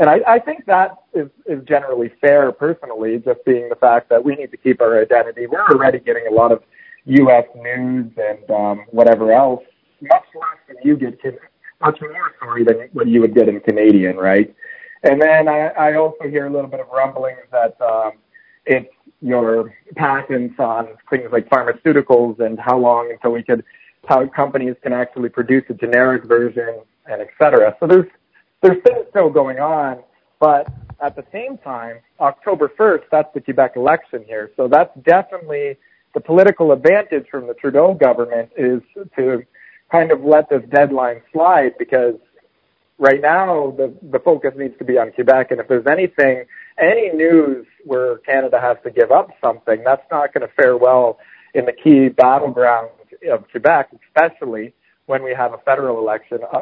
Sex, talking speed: male, 175 wpm